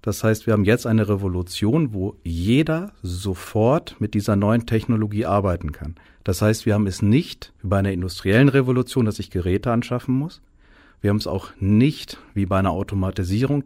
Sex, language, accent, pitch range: male, German, German, 95-125 Hz